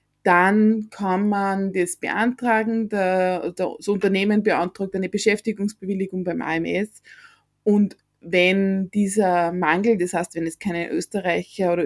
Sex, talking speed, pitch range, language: female, 115 wpm, 185-230 Hz, German